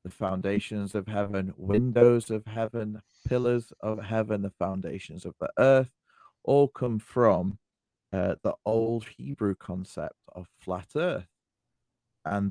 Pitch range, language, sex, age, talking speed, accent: 95-115 Hz, English, male, 30-49, 130 wpm, British